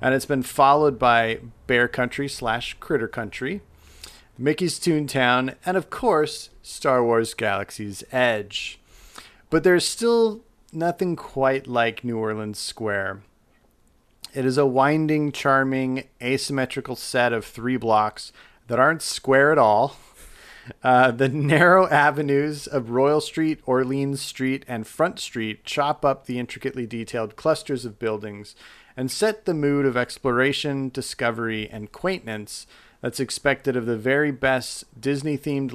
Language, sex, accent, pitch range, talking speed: English, male, American, 115-140 Hz, 135 wpm